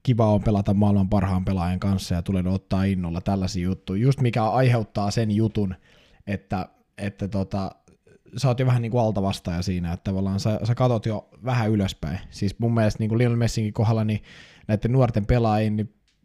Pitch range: 100-115 Hz